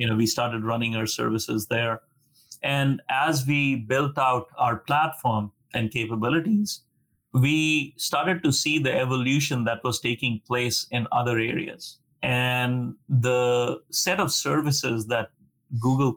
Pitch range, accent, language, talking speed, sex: 115-135 Hz, Indian, English, 135 wpm, male